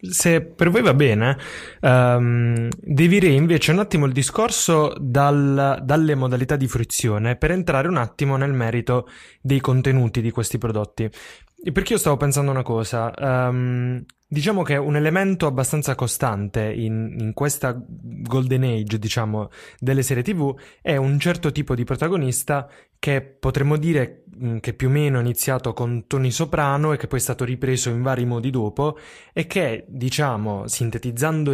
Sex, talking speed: male, 160 wpm